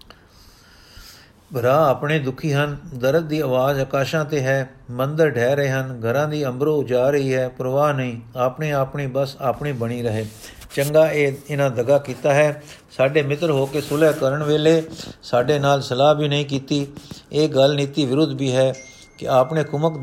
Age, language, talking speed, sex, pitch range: 50-69, Punjabi, 175 wpm, male, 125-150 Hz